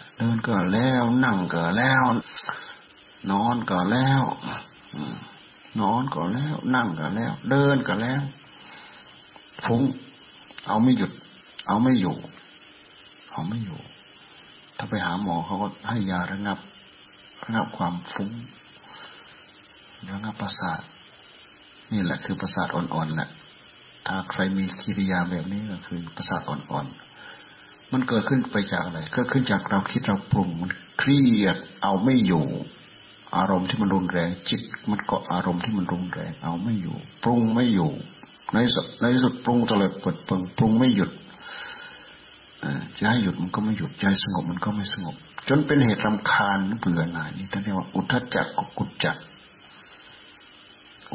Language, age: Thai, 60-79